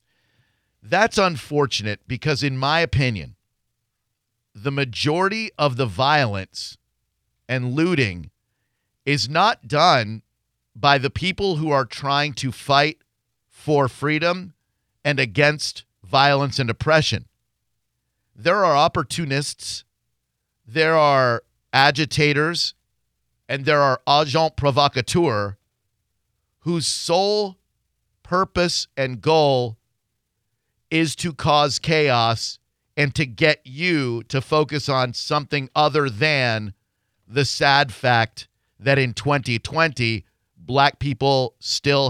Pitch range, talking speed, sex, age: 115-150 Hz, 100 wpm, male, 50-69